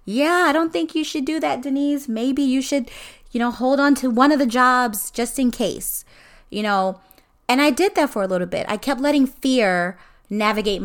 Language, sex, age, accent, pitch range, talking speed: English, female, 20-39, American, 190-245 Hz, 215 wpm